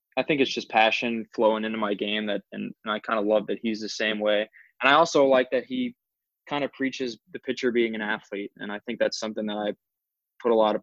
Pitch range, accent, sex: 110-130 Hz, American, male